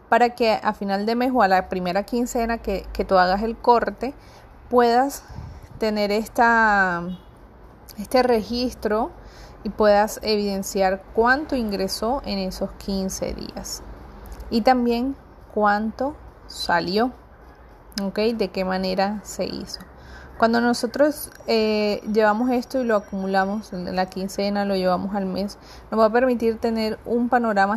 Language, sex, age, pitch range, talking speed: Spanish, female, 30-49, 195-235 Hz, 135 wpm